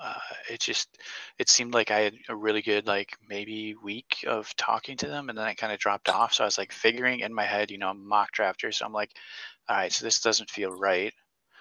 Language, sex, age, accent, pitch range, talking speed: English, male, 20-39, American, 110-130 Hz, 240 wpm